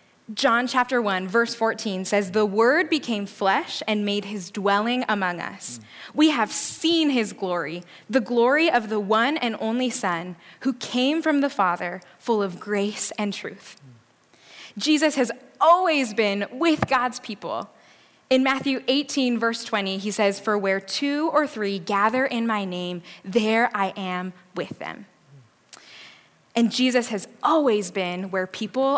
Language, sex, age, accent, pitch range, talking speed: English, female, 10-29, American, 195-265 Hz, 155 wpm